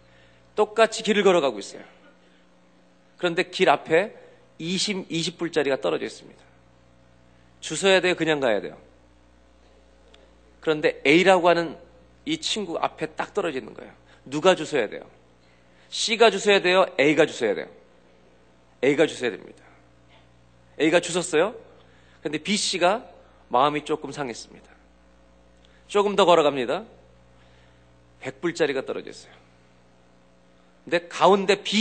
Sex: male